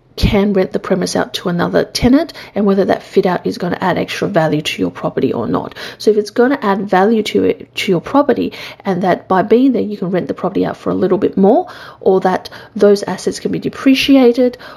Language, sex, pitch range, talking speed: English, female, 175-225 Hz, 240 wpm